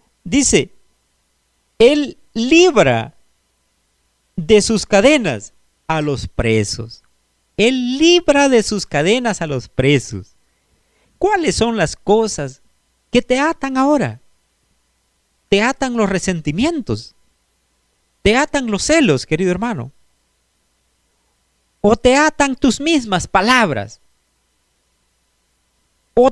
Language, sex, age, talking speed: Spanish, male, 40-59, 95 wpm